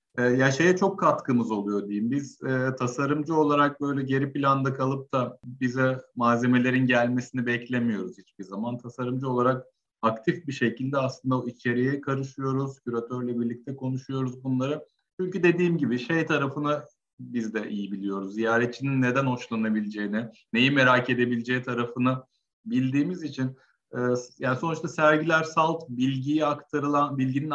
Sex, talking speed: male, 125 wpm